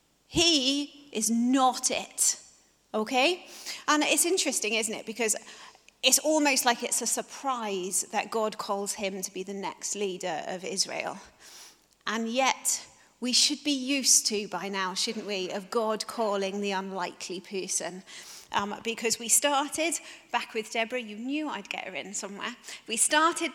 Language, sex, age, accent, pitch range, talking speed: English, female, 40-59, British, 225-295 Hz, 155 wpm